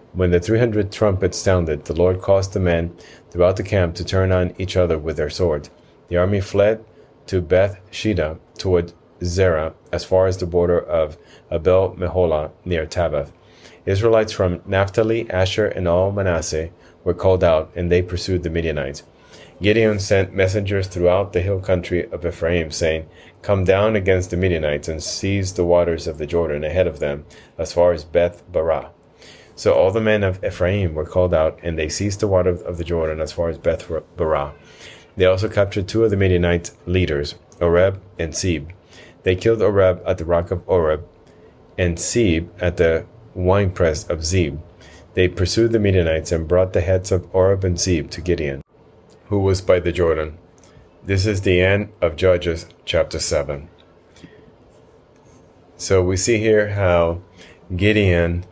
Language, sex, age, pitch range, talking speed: English, male, 30-49, 85-95 Hz, 170 wpm